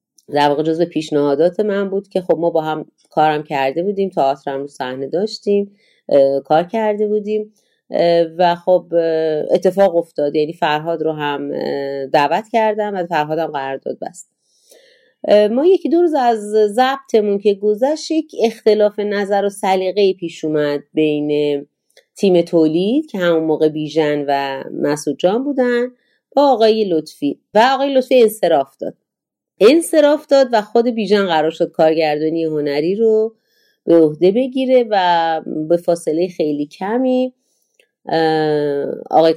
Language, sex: Persian, female